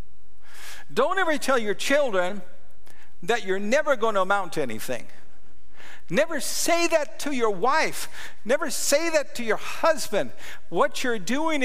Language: English